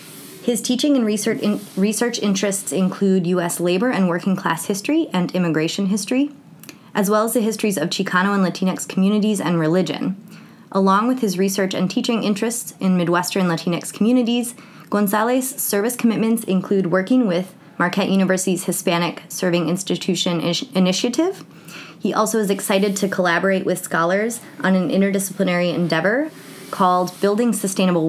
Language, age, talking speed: English, 20-39, 140 wpm